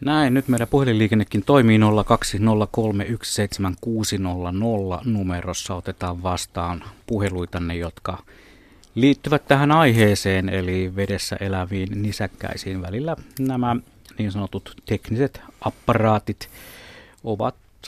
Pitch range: 95-120 Hz